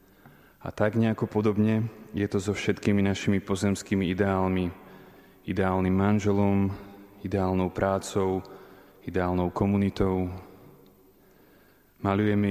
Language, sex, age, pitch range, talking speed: Slovak, male, 20-39, 95-100 Hz, 80 wpm